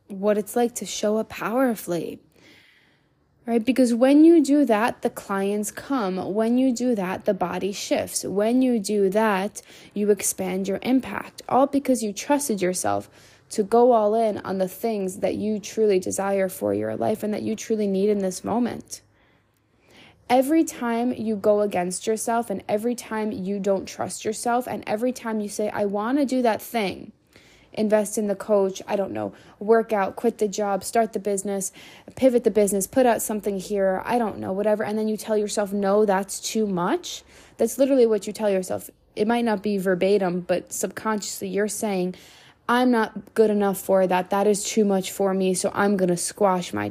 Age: 20-39